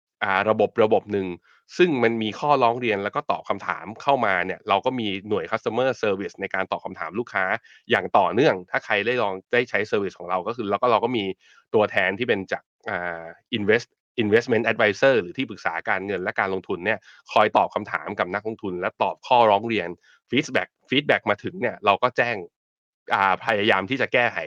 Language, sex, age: Thai, male, 20-39